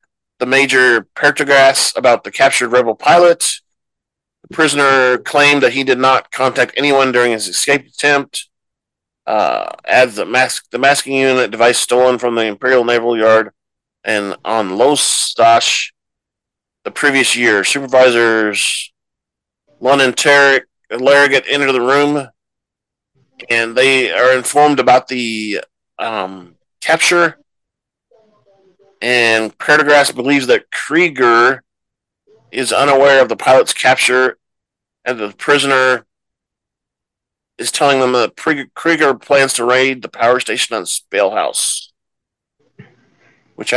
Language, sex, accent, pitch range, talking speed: English, male, American, 115-140 Hz, 120 wpm